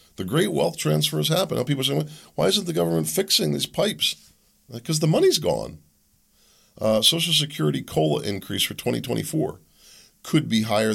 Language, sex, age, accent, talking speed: English, male, 40-59, American, 185 wpm